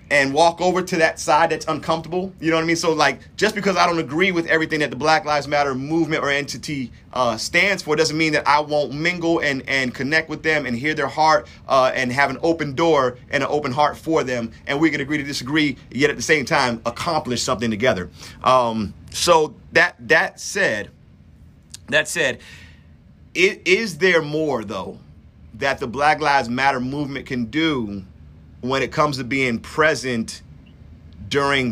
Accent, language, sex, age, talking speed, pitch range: American, English, male, 30-49, 190 wpm, 125-165 Hz